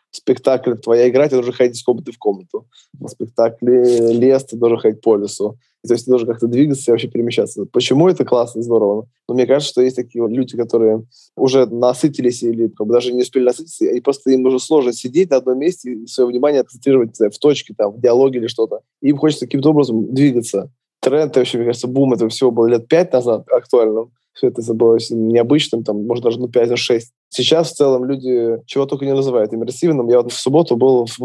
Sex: male